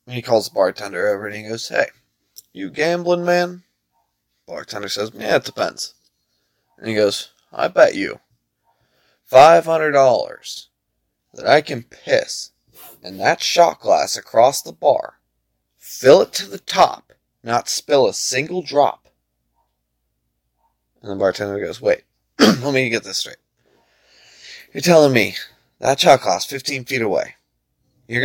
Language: English